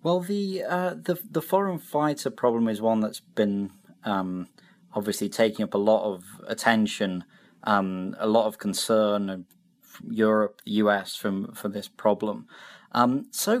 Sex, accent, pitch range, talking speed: male, British, 95-130 Hz, 155 wpm